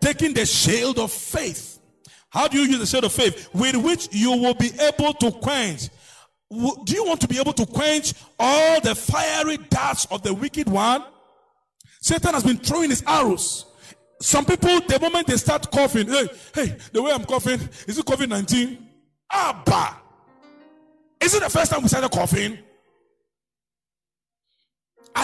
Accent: Nigerian